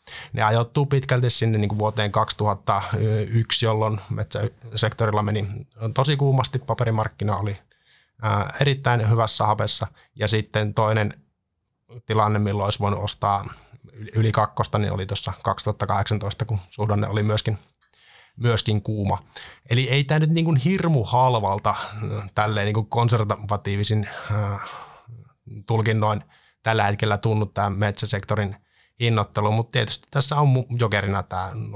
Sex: male